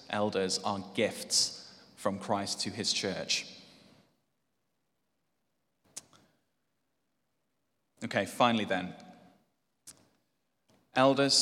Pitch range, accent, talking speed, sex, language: 100-130 Hz, British, 65 wpm, male, English